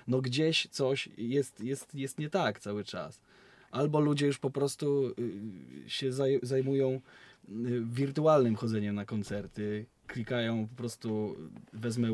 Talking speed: 120 wpm